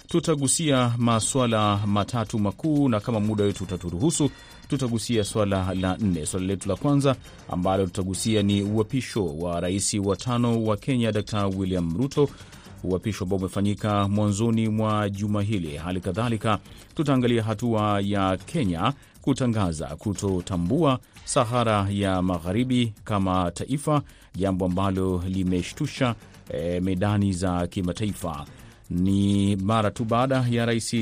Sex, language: male, Swahili